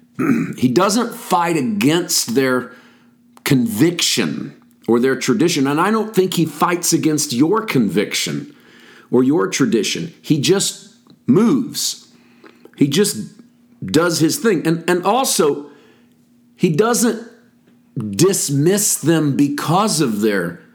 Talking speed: 115 wpm